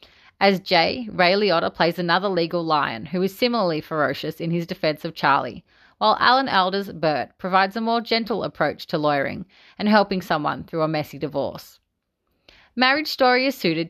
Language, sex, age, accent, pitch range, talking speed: English, female, 30-49, Australian, 160-215 Hz, 170 wpm